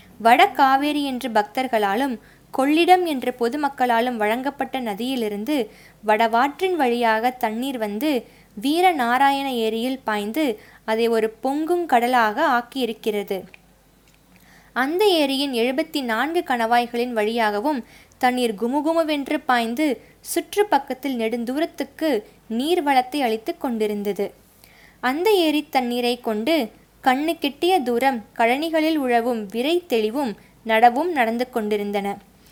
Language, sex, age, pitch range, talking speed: Tamil, female, 20-39, 230-295 Hz, 90 wpm